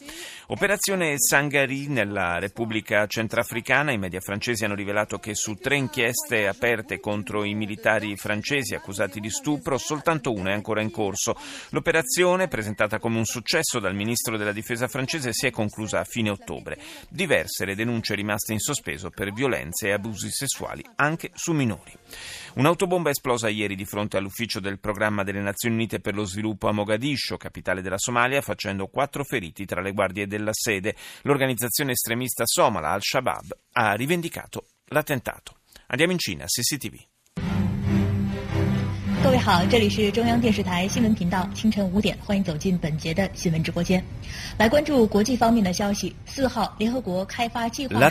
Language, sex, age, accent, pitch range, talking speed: Italian, male, 30-49, native, 105-145 Hz, 120 wpm